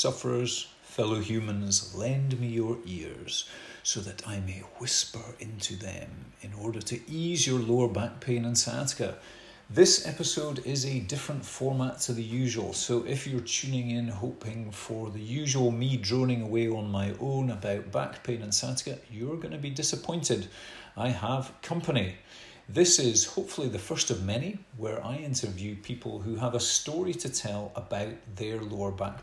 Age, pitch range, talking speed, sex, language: 40-59, 105-125 Hz, 170 wpm, male, English